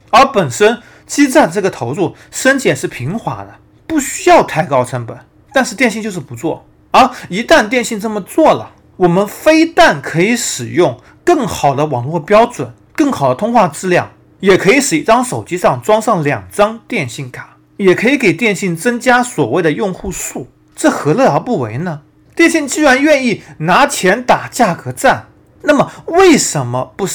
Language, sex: Chinese, male